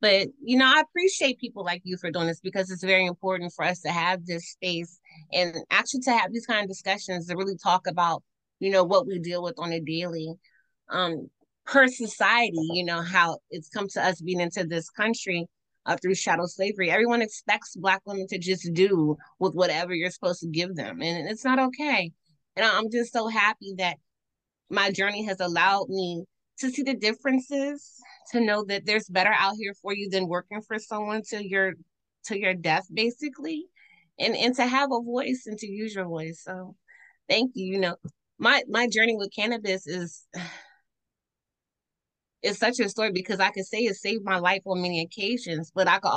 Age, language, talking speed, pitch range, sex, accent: 20-39, English, 200 wpm, 170-215 Hz, female, American